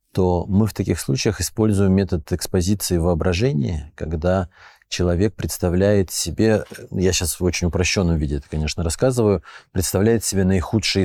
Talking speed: 135 wpm